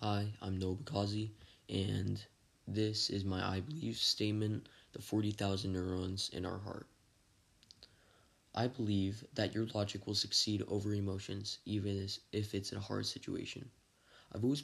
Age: 20-39